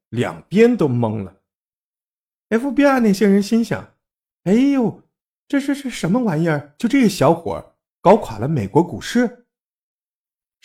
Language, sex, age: Chinese, male, 50-69